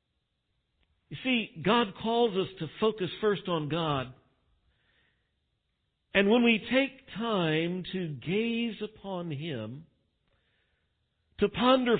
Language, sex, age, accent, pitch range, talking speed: English, male, 50-69, American, 130-210 Hz, 105 wpm